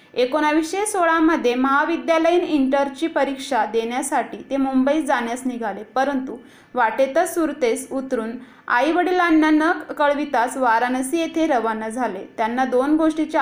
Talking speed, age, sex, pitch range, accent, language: 110 wpm, 20-39, female, 250-310 Hz, native, Marathi